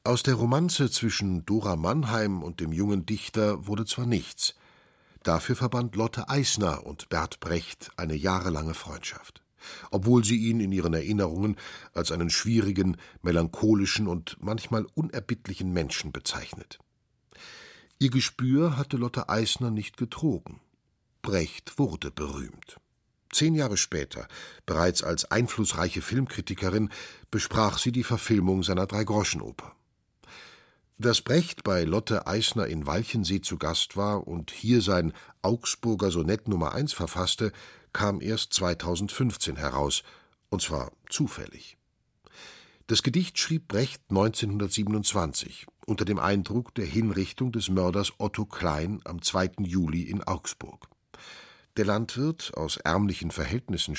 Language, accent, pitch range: German, German, 90-115 Hz